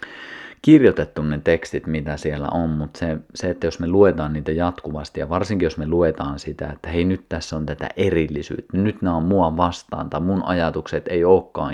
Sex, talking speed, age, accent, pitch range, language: male, 200 wpm, 30-49, native, 75-90 Hz, Finnish